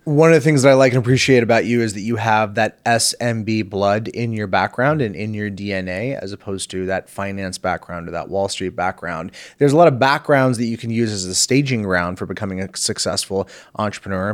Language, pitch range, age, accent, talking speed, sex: English, 105-135 Hz, 30-49, American, 225 wpm, male